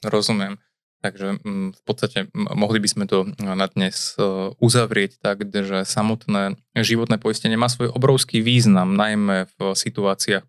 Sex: male